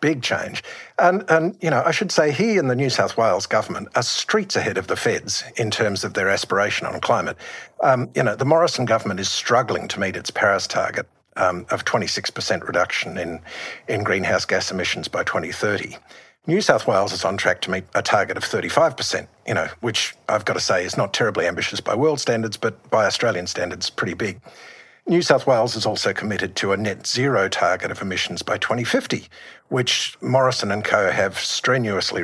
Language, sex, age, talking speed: English, male, 50-69, 205 wpm